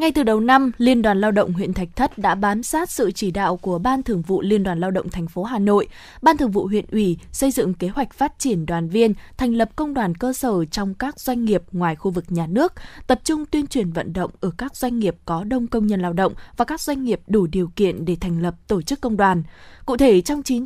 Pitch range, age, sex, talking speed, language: 185-250 Hz, 20-39, female, 265 wpm, Vietnamese